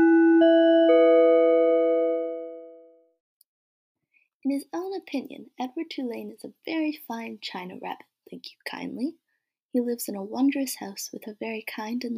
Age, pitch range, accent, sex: 20-39, 200-275 Hz, American, female